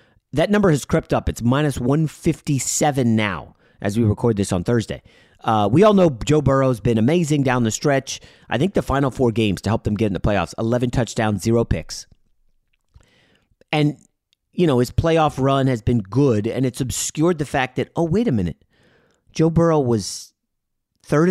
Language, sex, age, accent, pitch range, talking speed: English, male, 30-49, American, 115-160 Hz, 185 wpm